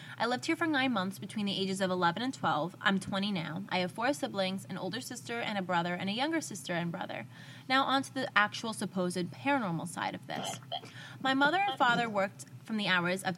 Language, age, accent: English, 20-39, American